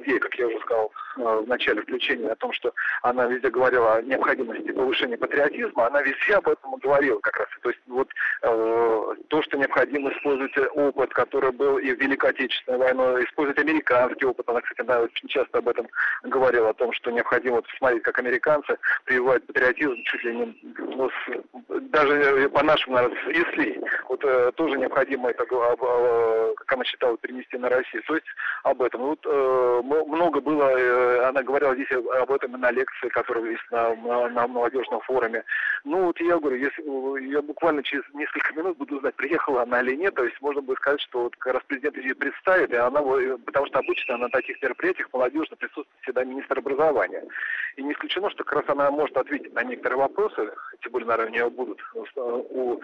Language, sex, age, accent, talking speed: Russian, male, 40-59, native, 190 wpm